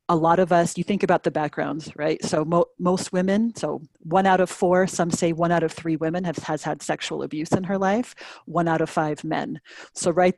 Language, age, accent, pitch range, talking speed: English, 40-59, American, 160-185 Hz, 235 wpm